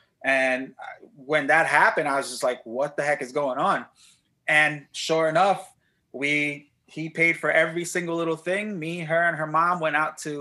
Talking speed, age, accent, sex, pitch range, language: 190 wpm, 30-49, American, male, 135-165 Hz, English